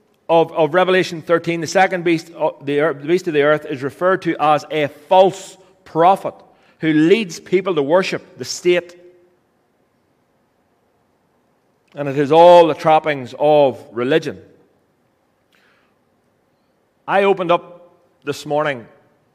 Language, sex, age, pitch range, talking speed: English, male, 30-49, 125-170 Hz, 120 wpm